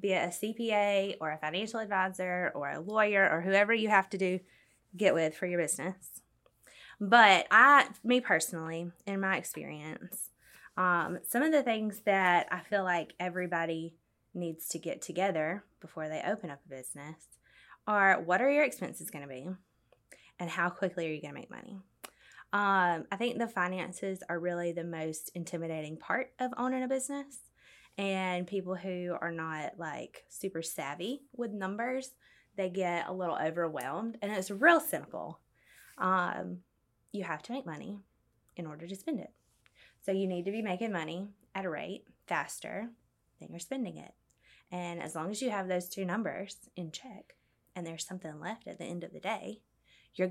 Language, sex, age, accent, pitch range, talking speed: English, female, 20-39, American, 170-205 Hz, 175 wpm